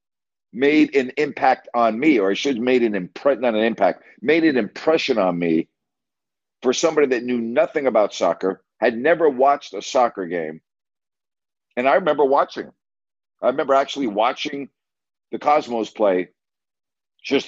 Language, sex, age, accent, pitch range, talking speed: English, male, 50-69, American, 105-135 Hz, 145 wpm